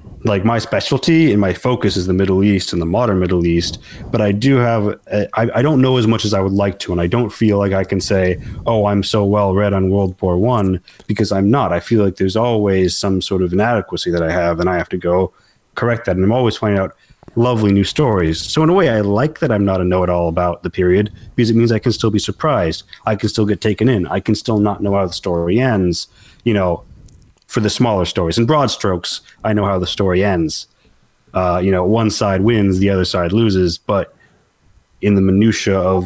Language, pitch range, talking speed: English, 95-110 Hz, 240 wpm